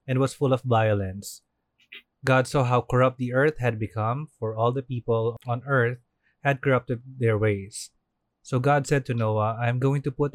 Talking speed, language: 190 wpm, Filipino